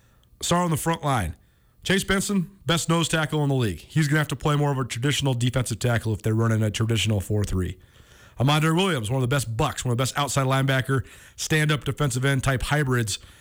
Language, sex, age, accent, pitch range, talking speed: English, male, 40-59, American, 120-155 Hz, 220 wpm